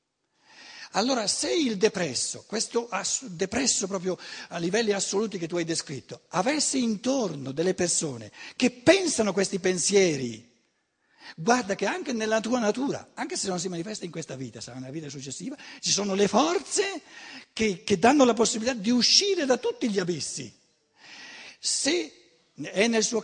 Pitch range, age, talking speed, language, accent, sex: 165-235 Hz, 60-79, 155 wpm, Italian, native, male